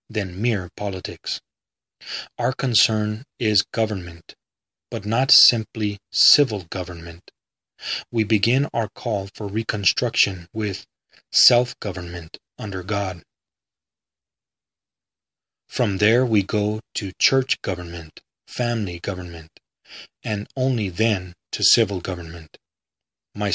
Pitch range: 95-115 Hz